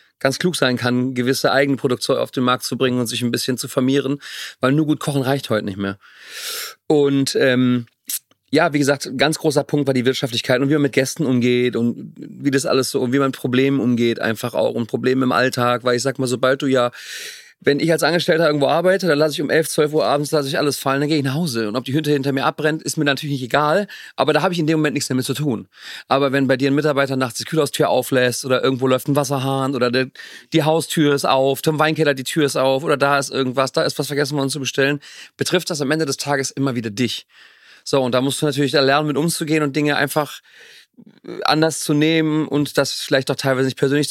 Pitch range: 130-150 Hz